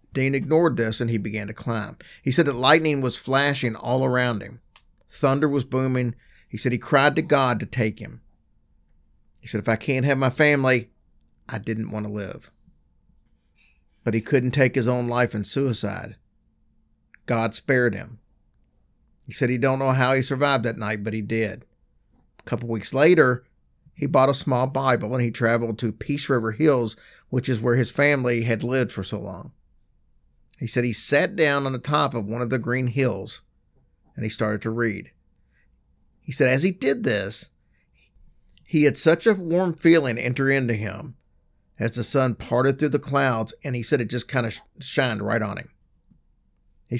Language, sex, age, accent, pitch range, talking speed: English, male, 50-69, American, 110-135 Hz, 185 wpm